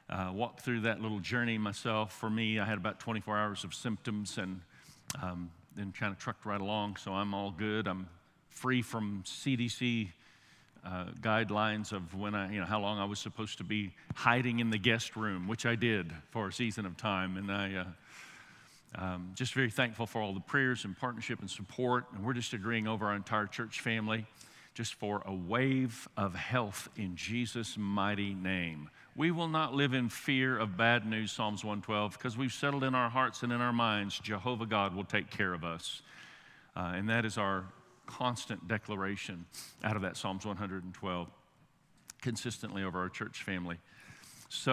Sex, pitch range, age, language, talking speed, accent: male, 100-125 Hz, 50-69, English, 185 wpm, American